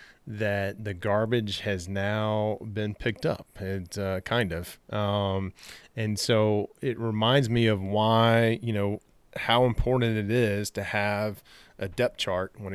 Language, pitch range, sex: English, 95-115 Hz, male